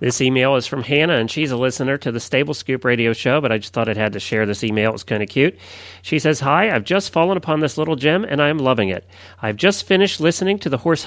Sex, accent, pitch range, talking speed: male, American, 115-175 Hz, 280 wpm